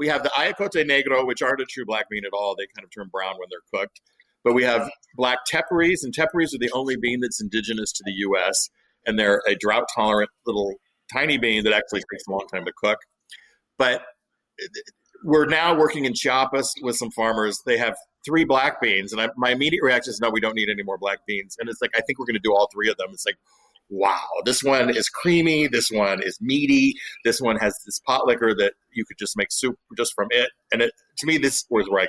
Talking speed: 235 wpm